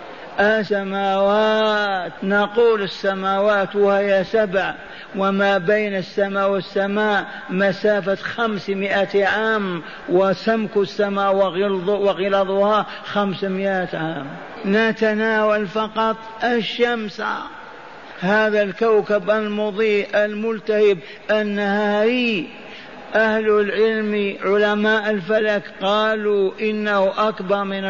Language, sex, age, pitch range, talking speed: Arabic, male, 50-69, 200-220 Hz, 70 wpm